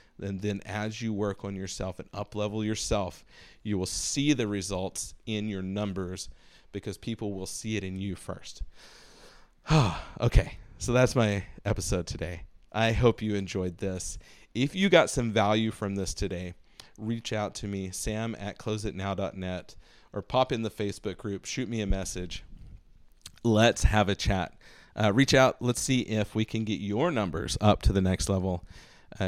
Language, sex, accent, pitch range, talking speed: English, male, American, 95-110 Hz, 170 wpm